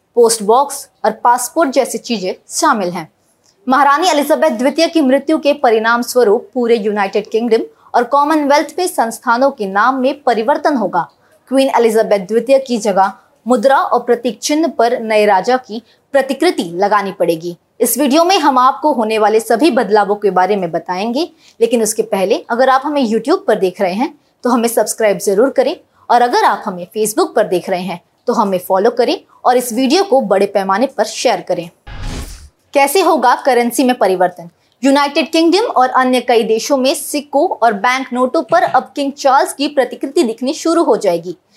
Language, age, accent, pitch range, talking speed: Hindi, 20-39, native, 220-290 Hz, 160 wpm